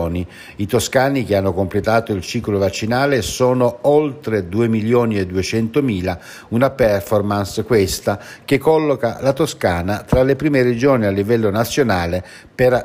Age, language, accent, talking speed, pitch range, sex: 60-79, Italian, native, 140 wpm, 100-125 Hz, male